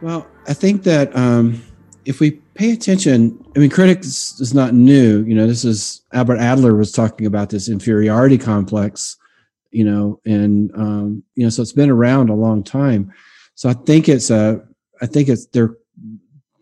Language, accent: English, American